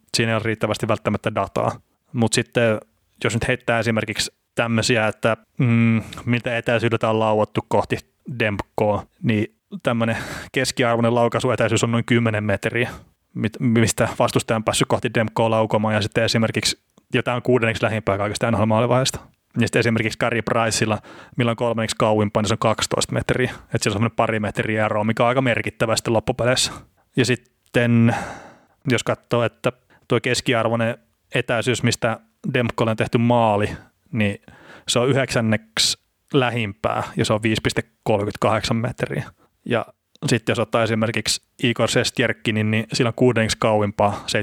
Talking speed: 135 wpm